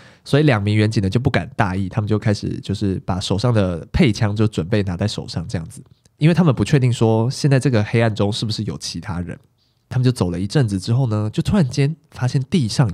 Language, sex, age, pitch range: Chinese, male, 20-39, 105-135 Hz